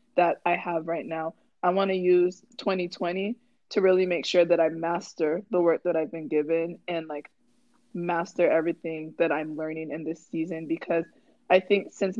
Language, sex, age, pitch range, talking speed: English, female, 20-39, 160-190 Hz, 180 wpm